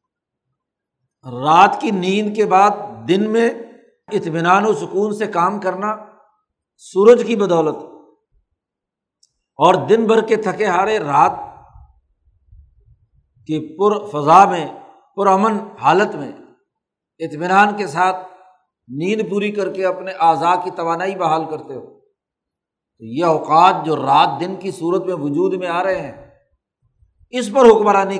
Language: Urdu